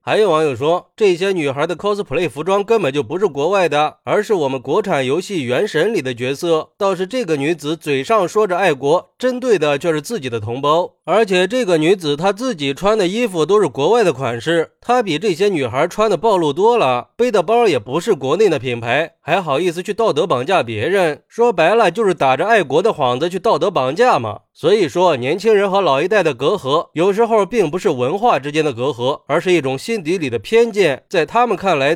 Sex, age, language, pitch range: male, 20-39, Chinese, 155-230 Hz